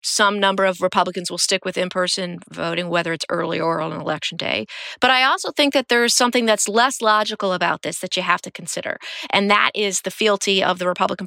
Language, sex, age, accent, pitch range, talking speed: English, female, 30-49, American, 185-220 Hz, 225 wpm